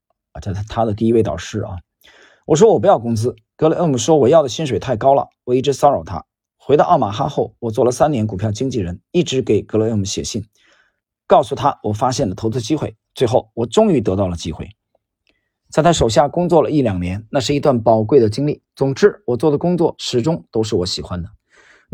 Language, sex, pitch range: Chinese, male, 105-155 Hz